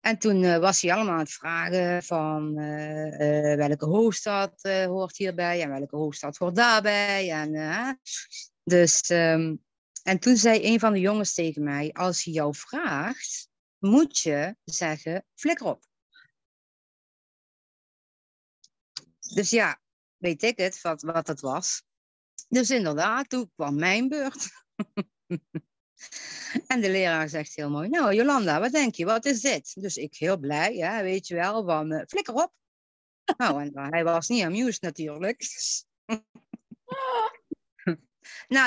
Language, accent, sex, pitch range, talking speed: Dutch, Dutch, female, 160-225 Hz, 145 wpm